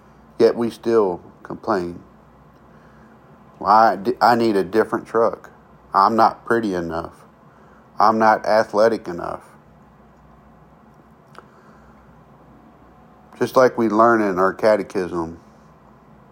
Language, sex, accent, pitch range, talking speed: English, male, American, 90-110 Hz, 95 wpm